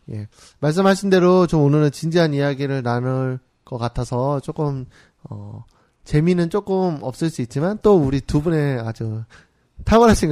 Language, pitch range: Korean, 125-175 Hz